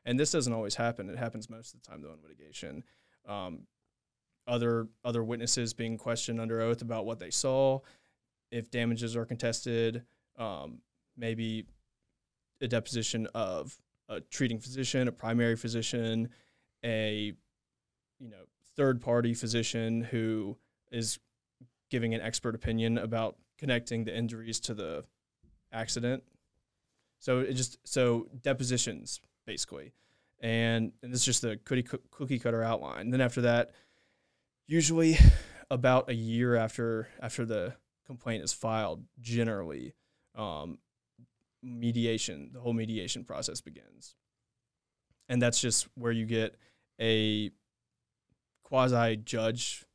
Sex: male